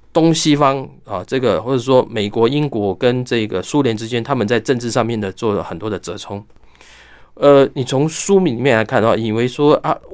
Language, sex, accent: Chinese, male, native